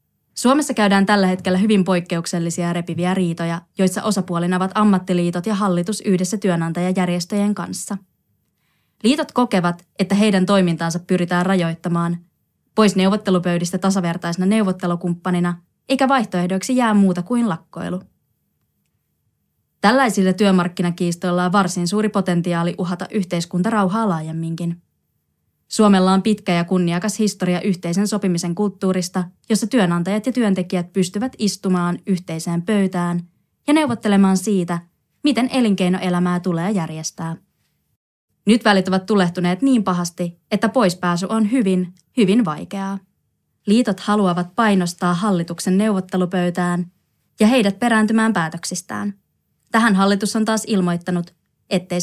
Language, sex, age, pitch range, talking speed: Finnish, female, 20-39, 175-210 Hz, 110 wpm